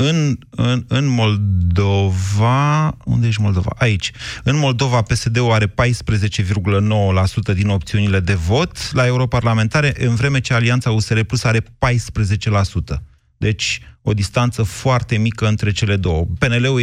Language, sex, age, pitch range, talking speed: Romanian, male, 30-49, 100-125 Hz, 130 wpm